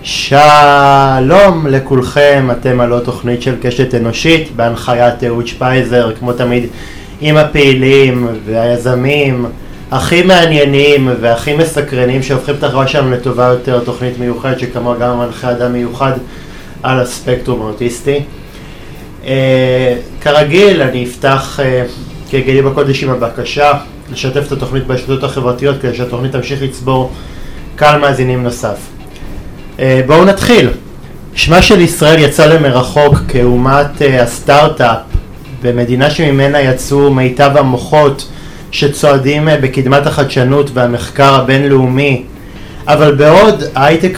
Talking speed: 105 wpm